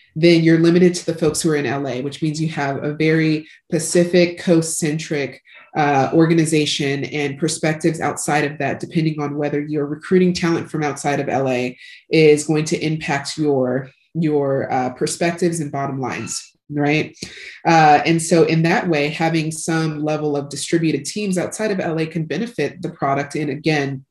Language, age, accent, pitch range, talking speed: English, 20-39, American, 150-170 Hz, 170 wpm